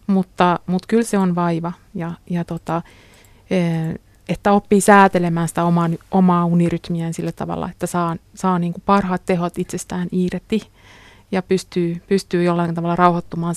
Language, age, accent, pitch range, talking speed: Finnish, 30-49, native, 170-190 Hz, 140 wpm